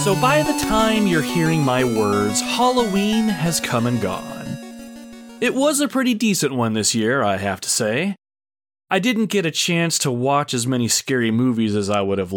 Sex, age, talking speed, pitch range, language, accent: male, 30-49, 195 wpm, 110-165 Hz, English, American